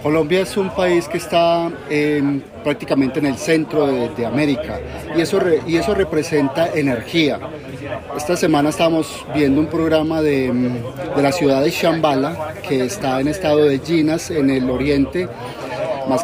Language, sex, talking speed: English, male, 160 wpm